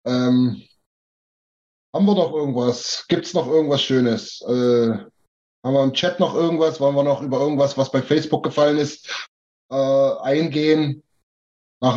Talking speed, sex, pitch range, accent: 150 wpm, male, 125-145 Hz, German